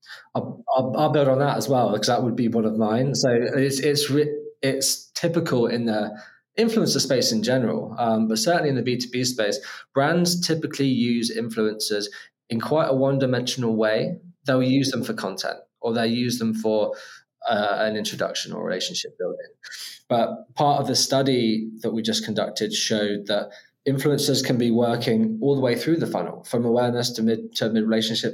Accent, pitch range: British, 115-140 Hz